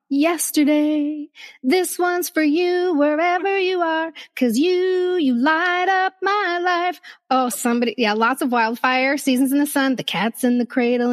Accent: American